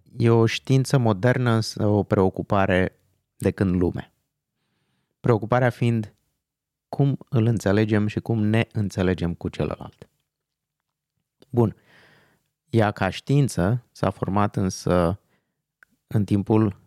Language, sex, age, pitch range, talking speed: Romanian, male, 30-49, 90-120 Hz, 105 wpm